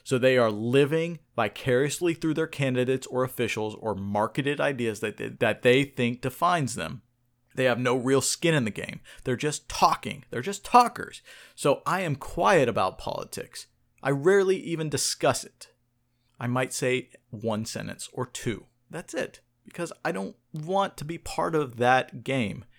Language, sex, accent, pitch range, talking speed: English, male, American, 120-145 Hz, 165 wpm